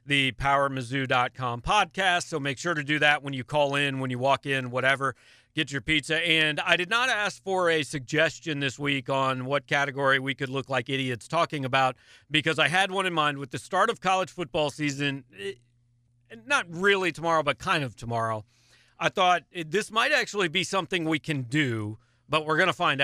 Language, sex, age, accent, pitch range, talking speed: English, male, 40-59, American, 135-180 Hz, 200 wpm